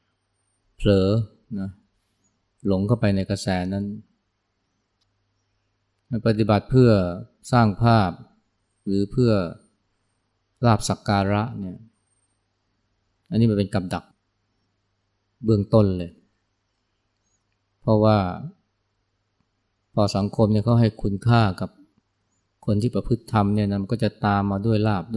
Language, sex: Thai, male